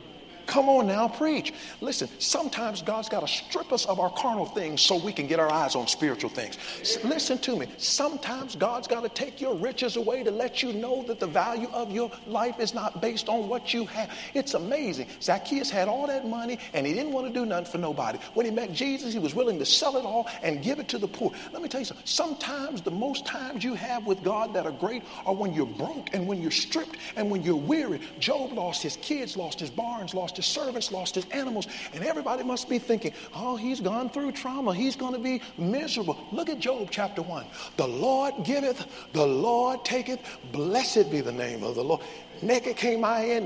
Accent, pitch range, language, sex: American, 175-255 Hz, English, male